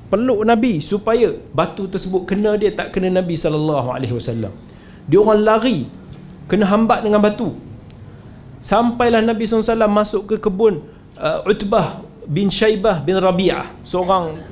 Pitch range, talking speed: 135-195 Hz, 130 wpm